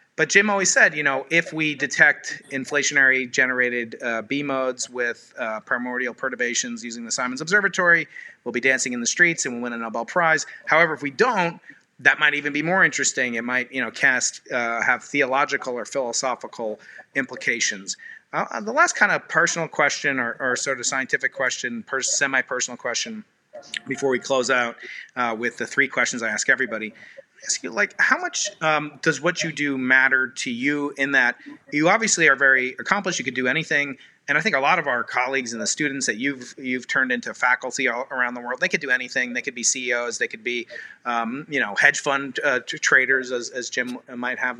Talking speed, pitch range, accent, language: 195 wpm, 125-160 Hz, American, English